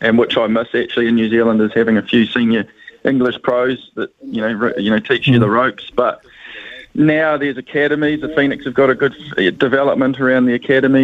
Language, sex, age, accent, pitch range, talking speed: English, male, 20-39, Australian, 115-130 Hz, 205 wpm